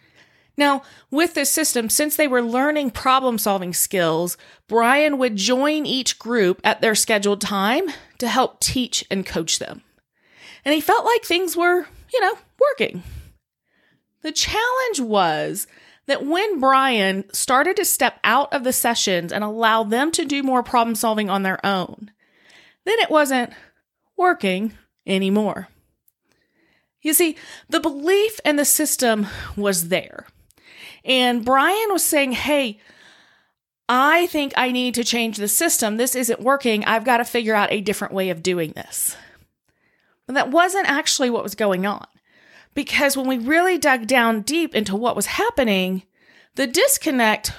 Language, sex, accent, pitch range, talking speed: English, female, American, 215-310 Hz, 150 wpm